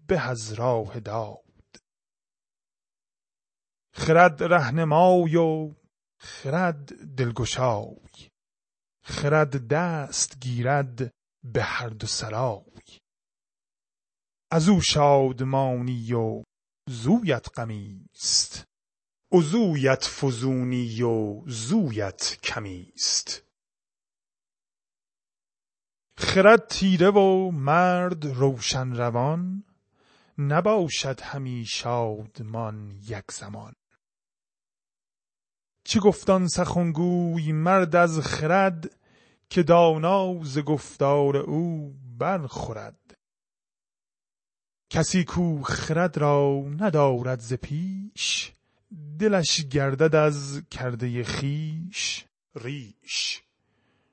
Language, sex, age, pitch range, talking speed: Persian, male, 30-49, 125-175 Hz, 65 wpm